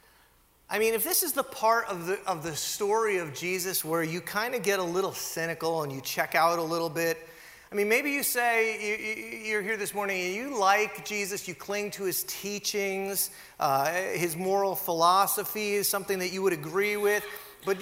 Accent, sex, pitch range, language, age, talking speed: American, male, 165-245 Hz, English, 30-49, 205 wpm